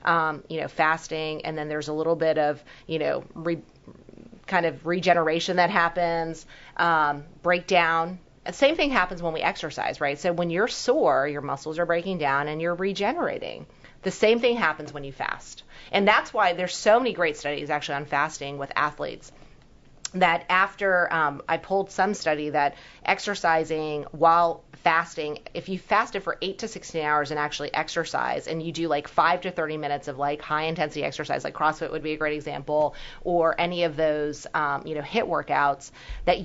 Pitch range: 150-175 Hz